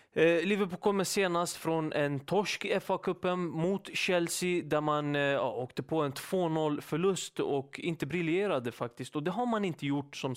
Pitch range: 130-170 Hz